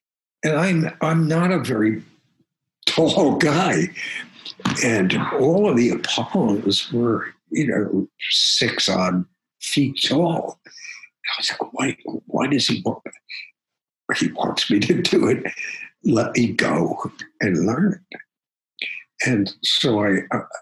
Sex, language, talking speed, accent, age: male, English, 120 wpm, American, 60-79